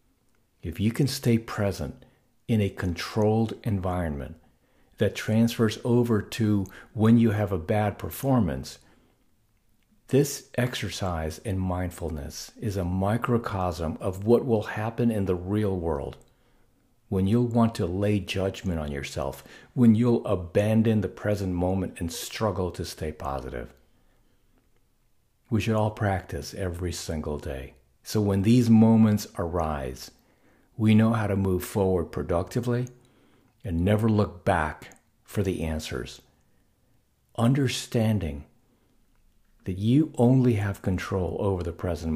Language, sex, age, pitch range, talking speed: English, male, 50-69, 90-115 Hz, 125 wpm